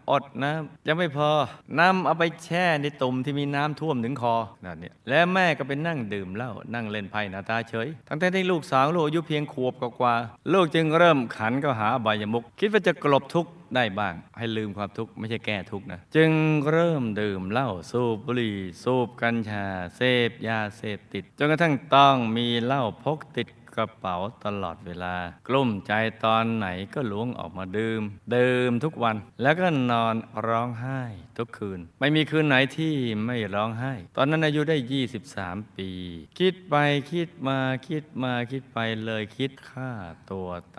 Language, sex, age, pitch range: Thai, male, 20-39, 105-140 Hz